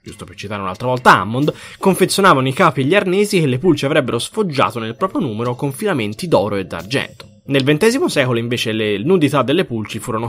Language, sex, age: Italian, male, 20-39